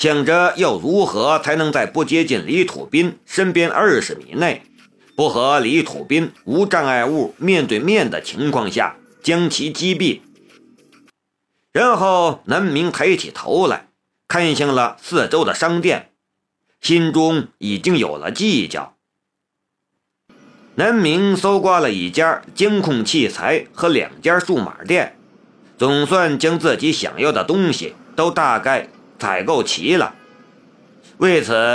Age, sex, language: 50-69, male, Chinese